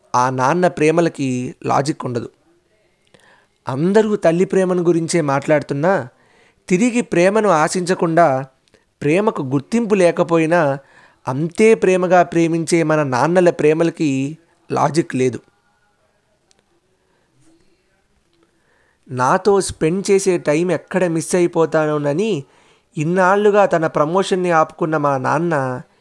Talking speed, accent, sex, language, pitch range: 90 wpm, native, male, Telugu, 150-185 Hz